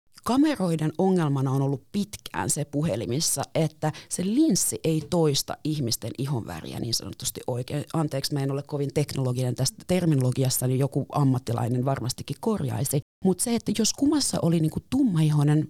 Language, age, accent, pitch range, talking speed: Finnish, 30-49, native, 135-190 Hz, 145 wpm